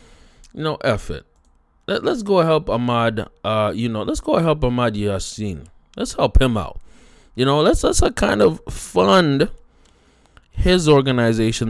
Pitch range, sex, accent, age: 105-140 Hz, male, American, 20-39